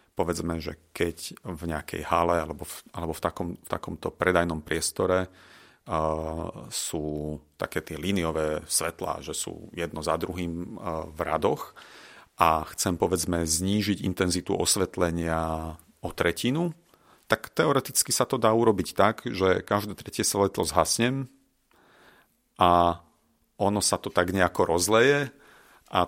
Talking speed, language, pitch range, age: 130 wpm, Slovak, 85-100 Hz, 40-59